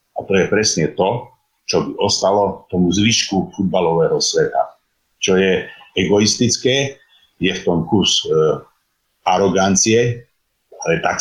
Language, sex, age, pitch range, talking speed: Slovak, male, 50-69, 90-115 Hz, 120 wpm